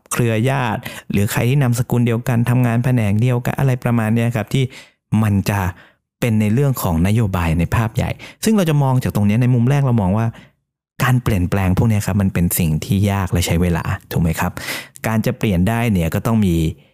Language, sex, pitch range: Thai, male, 90-125 Hz